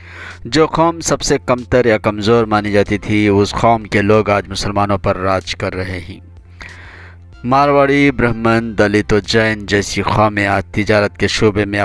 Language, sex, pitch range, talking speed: Urdu, male, 95-115 Hz, 165 wpm